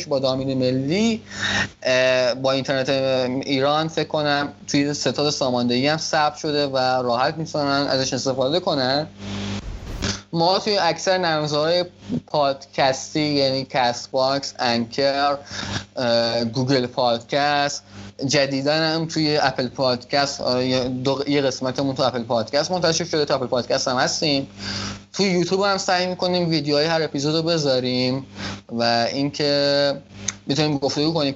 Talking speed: 120 wpm